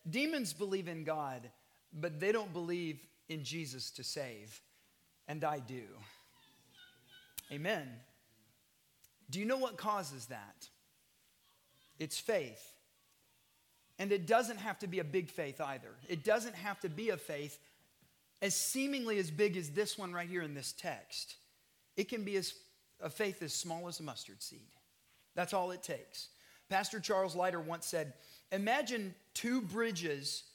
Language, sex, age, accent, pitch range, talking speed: English, male, 40-59, American, 145-200 Hz, 150 wpm